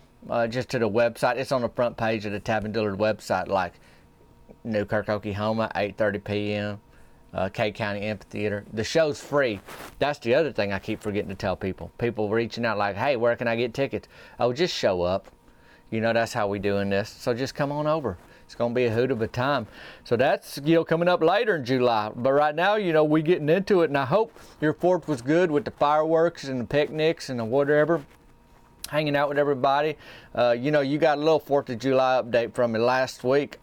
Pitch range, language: 110-140 Hz, English